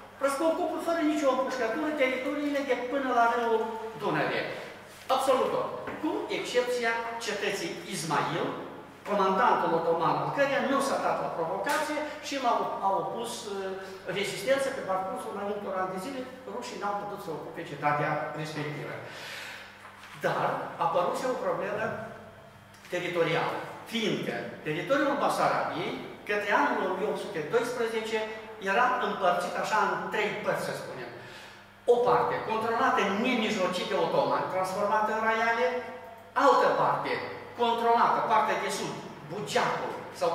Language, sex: Romanian, male